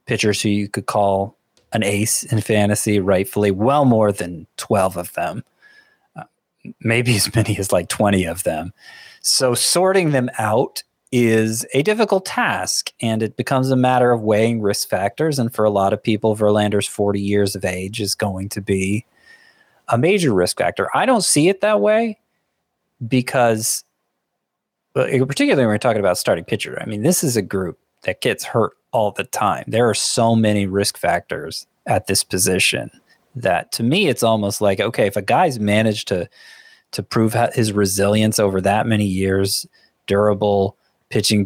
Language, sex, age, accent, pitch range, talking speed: English, male, 30-49, American, 100-130 Hz, 170 wpm